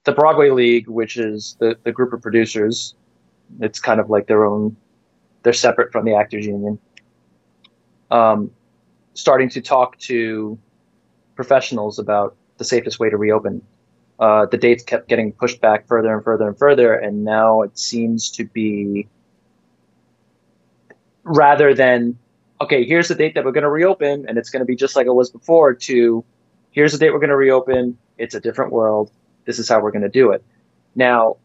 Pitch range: 105-125 Hz